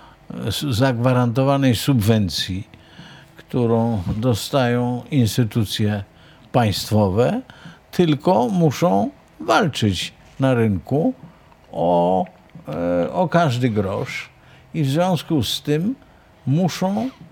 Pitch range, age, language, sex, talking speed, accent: 105-160 Hz, 50-69, Polish, male, 75 wpm, native